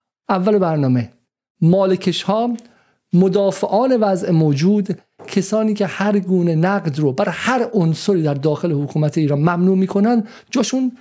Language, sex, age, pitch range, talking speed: Persian, male, 50-69, 145-195 Hz, 125 wpm